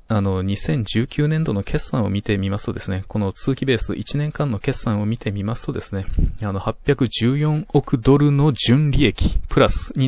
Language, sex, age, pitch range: Japanese, male, 20-39, 100-135 Hz